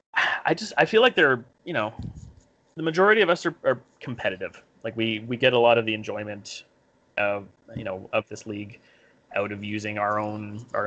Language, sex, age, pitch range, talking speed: English, male, 30-49, 105-120 Hz, 200 wpm